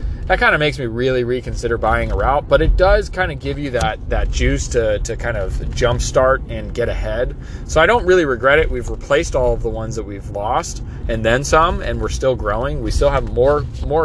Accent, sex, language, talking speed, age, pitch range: American, male, English, 240 wpm, 30-49, 110-155 Hz